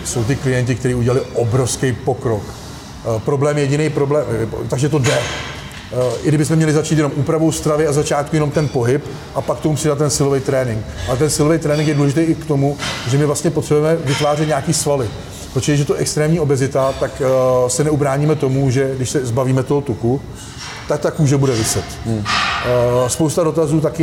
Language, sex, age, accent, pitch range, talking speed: Czech, male, 40-59, native, 130-150 Hz, 195 wpm